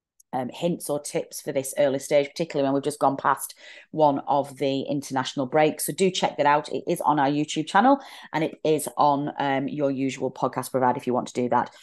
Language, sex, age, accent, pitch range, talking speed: English, female, 30-49, British, 130-155 Hz, 230 wpm